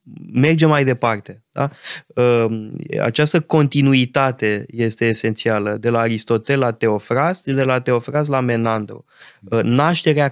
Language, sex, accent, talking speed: Romanian, male, native, 110 wpm